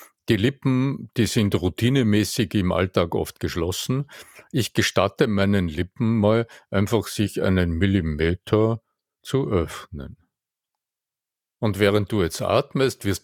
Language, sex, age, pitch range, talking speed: German, male, 50-69, 90-120 Hz, 120 wpm